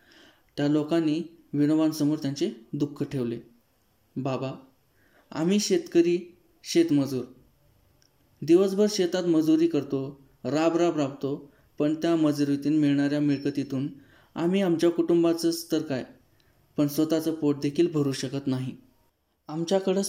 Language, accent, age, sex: Marathi, native, 20-39, male